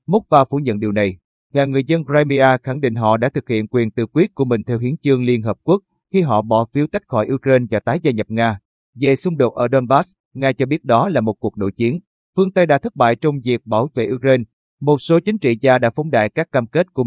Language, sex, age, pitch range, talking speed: Vietnamese, male, 30-49, 115-145 Hz, 265 wpm